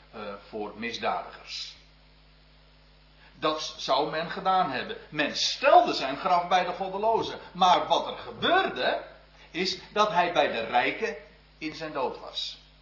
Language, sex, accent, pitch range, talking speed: Dutch, male, Dutch, 150-200 Hz, 130 wpm